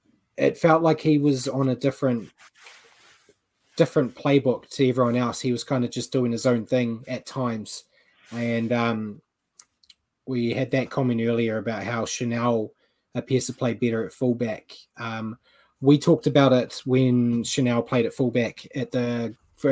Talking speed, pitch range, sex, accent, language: 160 wpm, 120-140 Hz, male, Australian, English